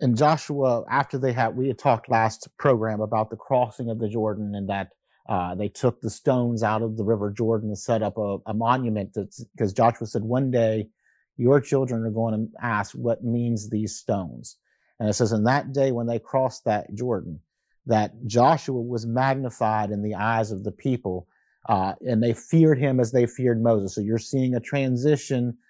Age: 40-59